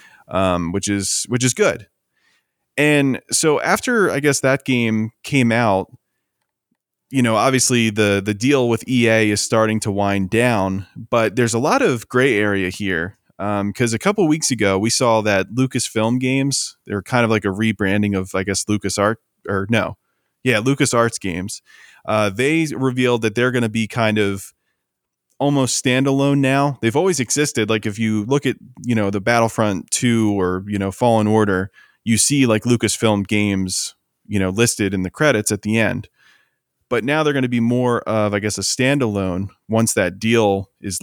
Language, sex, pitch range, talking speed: English, male, 100-125 Hz, 185 wpm